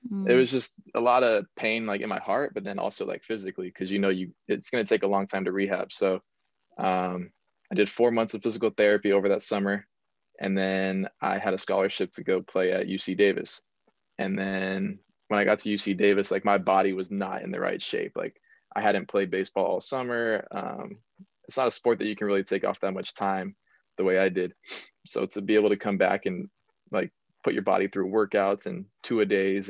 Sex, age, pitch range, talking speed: male, 20-39, 95-105 Hz, 230 wpm